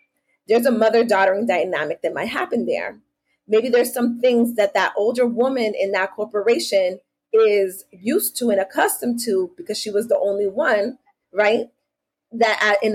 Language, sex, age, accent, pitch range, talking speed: English, female, 30-49, American, 200-250 Hz, 160 wpm